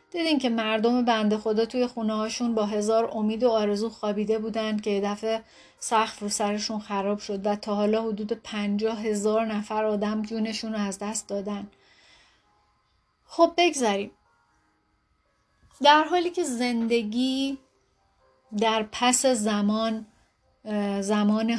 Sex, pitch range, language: female, 210-240 Hz, Persian